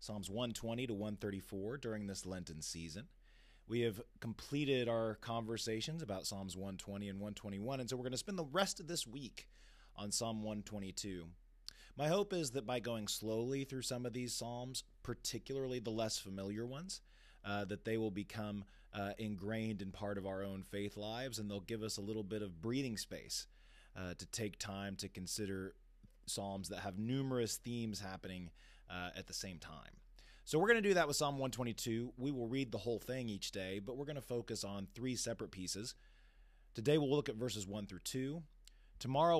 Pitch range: 95-125 Hz